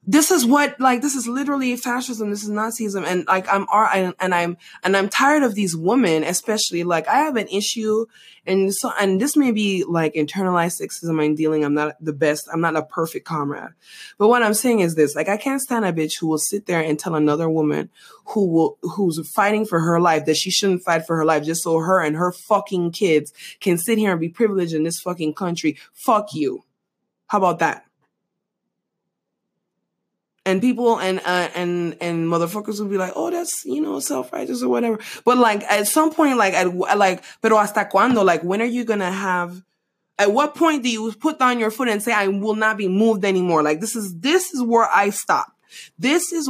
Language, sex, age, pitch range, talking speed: English, female, 20-39, 170-235 Hz, 215 wpm